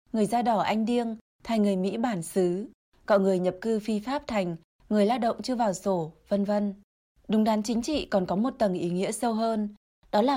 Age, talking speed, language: 20-39, 225 wpm, Vietnamese